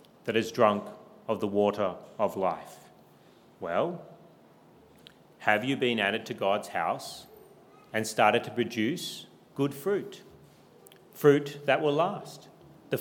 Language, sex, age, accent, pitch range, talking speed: English, male, 40-59, Australian, 115-150 Hz, 125 wpm